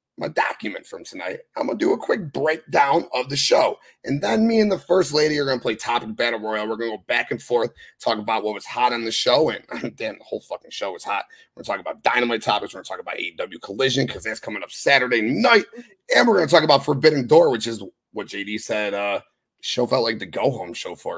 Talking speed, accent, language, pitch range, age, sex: 240 wpm, American, English, 115-170 Hz, 30-49, male